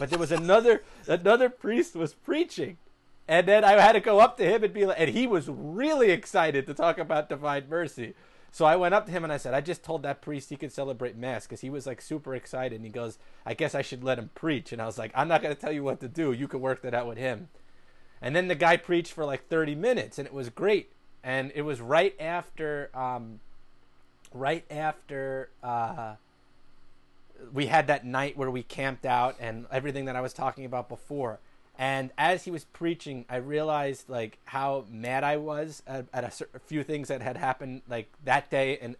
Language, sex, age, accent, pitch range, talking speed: English, male, 30-49, American, 125-155 Hz, 225 wpm